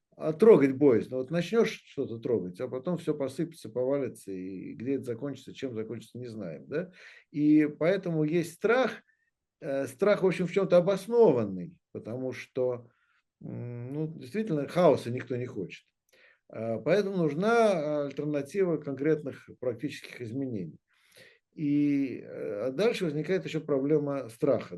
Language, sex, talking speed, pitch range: Russian, male, 125 wpm, 125-170 Hz